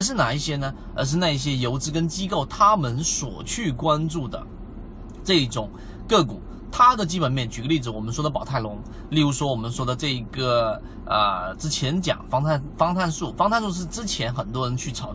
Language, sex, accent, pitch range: Chinese, male, native, 120-165 Hz